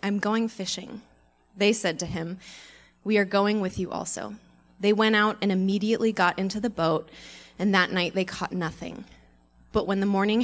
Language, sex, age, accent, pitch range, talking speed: English, female, 20-39, American, 170-210 Hz, 185 wpm